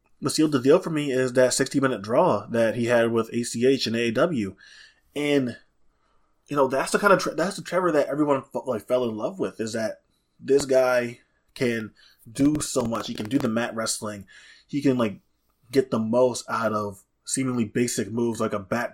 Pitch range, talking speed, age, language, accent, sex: 110-130 Hz, 205 wpm, 20-39, English, American, male